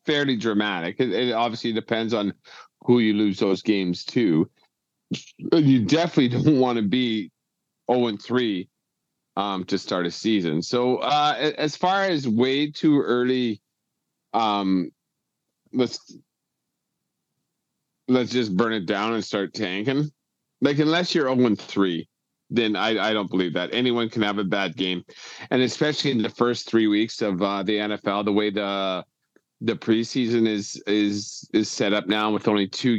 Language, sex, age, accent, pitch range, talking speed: English, male, 40-59, American, 100-130 Hz, 160 wpm